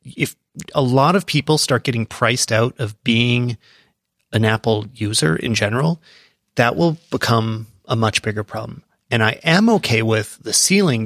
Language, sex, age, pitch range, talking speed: English, male, 30-49, 110-145 Hz, 165 wpm